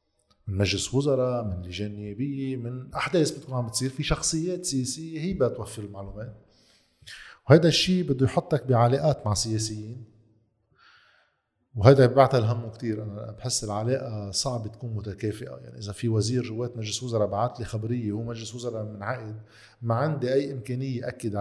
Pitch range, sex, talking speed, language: 110-135 Hz, male, 145 wpm, Arabic